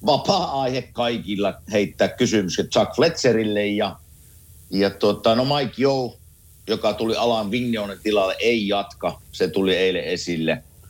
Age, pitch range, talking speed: 50-69, 90-120 Hz, 120 wpm